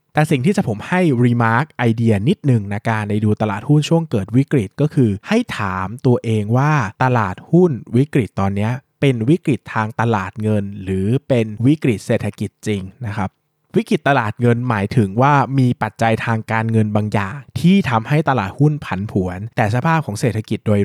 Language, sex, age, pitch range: Thai, male, 20-39, 110-140 Hz